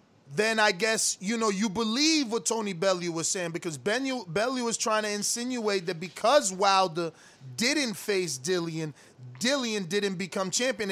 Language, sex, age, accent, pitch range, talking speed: English, male, 30-49, American, 205-260 Hz, 160 wpm